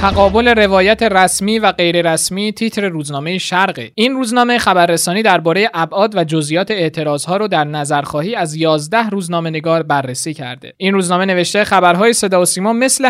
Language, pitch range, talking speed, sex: Persian, 155-215 Hz, 150 wpm, male